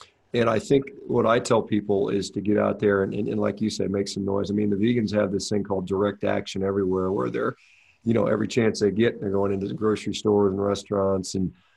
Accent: American